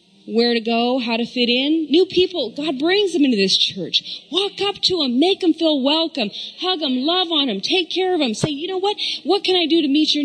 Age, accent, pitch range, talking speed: 30-49, American, 195-300 Hz, 250 wpm